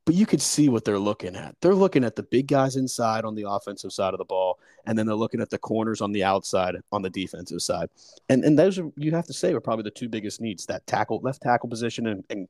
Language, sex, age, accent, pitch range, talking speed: English, male, 30-49, American, 105-130 Hz, 270 wpm